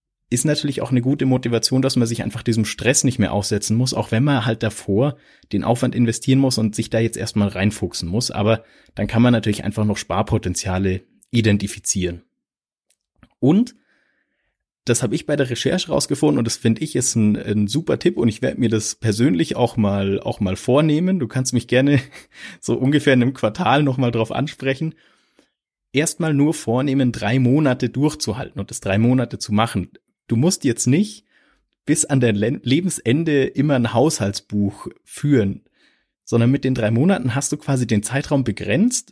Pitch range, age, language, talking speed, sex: 105-135 Hz, 30-49, German, 180 wpm, male